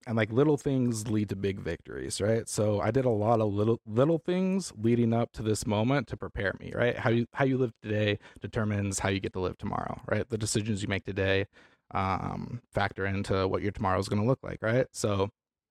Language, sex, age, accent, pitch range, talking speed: English, male, 20-39, American, 95-115 Hz, 225 wpm